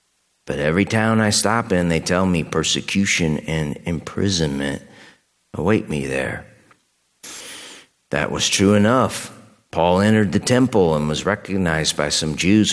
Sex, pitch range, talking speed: male, 75-100 Hz, 135 wpm